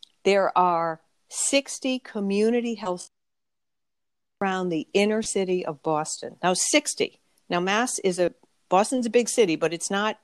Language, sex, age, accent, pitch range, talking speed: English, female, 50-69, American, 165-215 Hz, 140 wpm